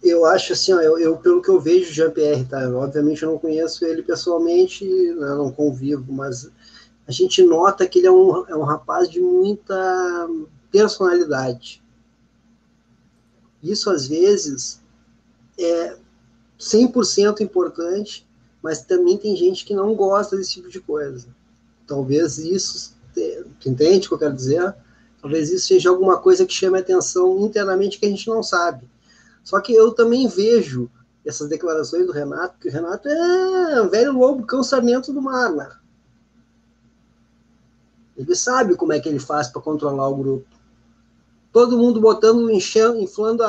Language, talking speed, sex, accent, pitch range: Portuguese, 150 wpm, male, Brazilian, 150-235 Hz